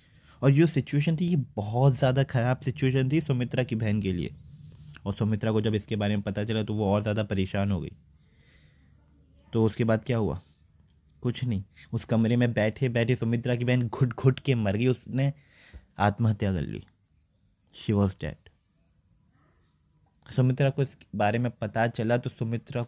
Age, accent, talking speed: 20-39, native, 175 wpm